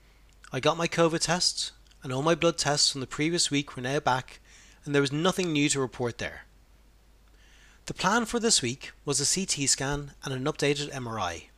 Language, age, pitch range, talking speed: English, 30-49, 125-165 Hz, 195 wpm